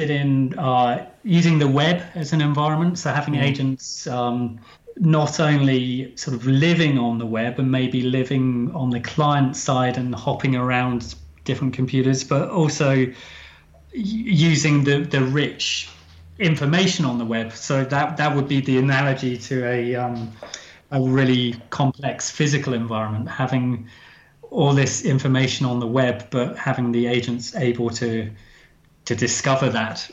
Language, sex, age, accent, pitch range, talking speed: English, male, 30-49, British, 125-145 Hz, 145 wpm